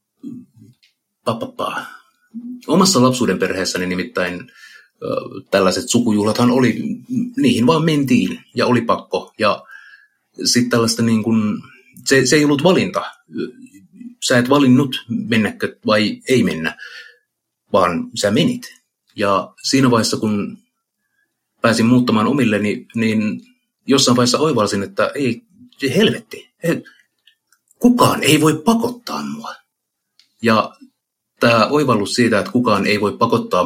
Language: Finnish